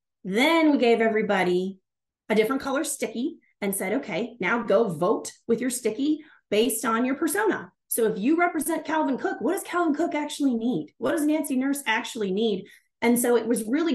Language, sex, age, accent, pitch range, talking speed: English, female, 30-49, American, 200-290 Hz, 190 wpm